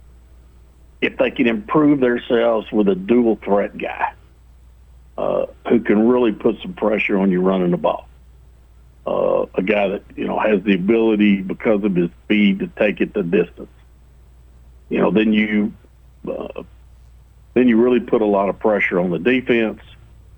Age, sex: 60-79, male